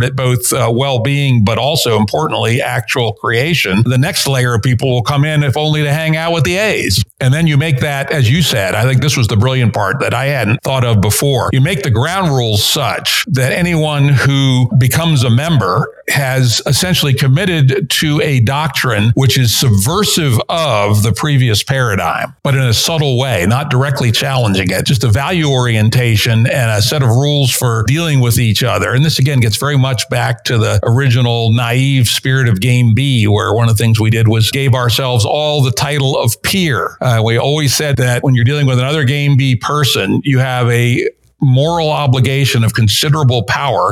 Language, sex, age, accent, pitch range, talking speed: English, male, 60-79, American, 115-140 Hz, 200 wpm